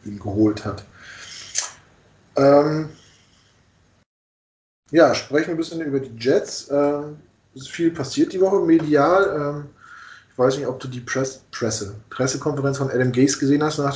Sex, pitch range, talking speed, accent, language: male, 115-140 Hz, 150 wpm, German, German